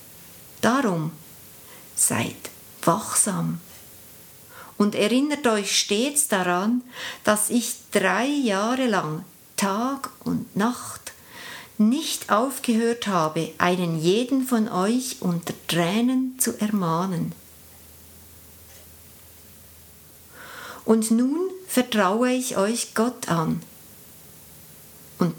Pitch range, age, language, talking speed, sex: 170-245 Hz, 50-69, German, 85 wpm, female